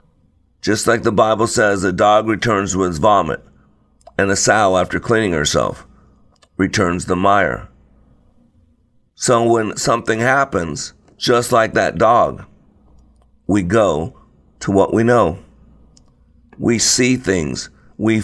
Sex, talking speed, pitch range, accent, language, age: male, 120 wpm, 75-115 Hz, American, English, 50-69